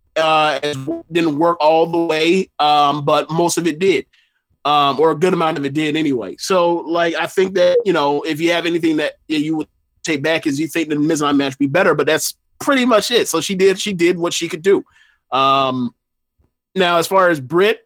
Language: English